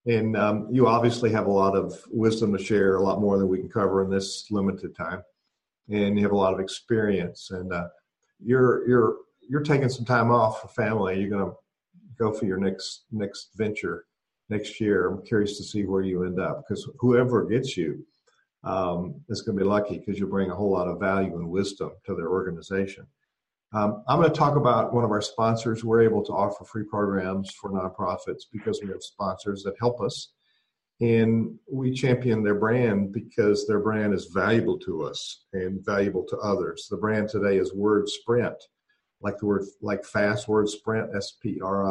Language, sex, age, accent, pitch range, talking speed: English, male, 50-69, American, 95-115 Hz, 200 wpm